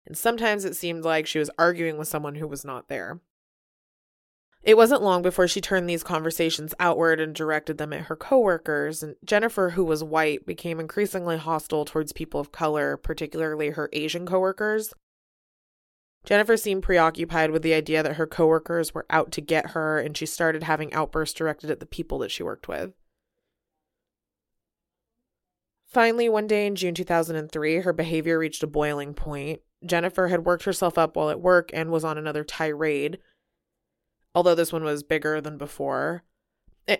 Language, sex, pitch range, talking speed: English, female, 155-180 Hz, 170 wpm